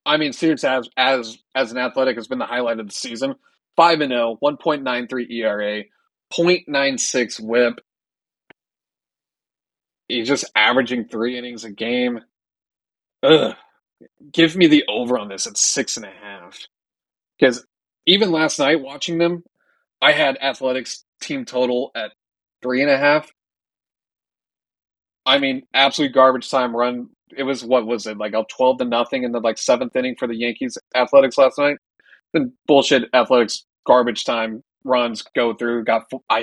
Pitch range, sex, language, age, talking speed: 120-135 Hz, male, English, 30-49, 140 wpm